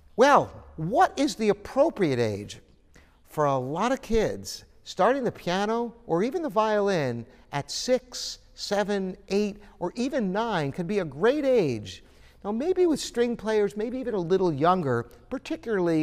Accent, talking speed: American, 155 wpm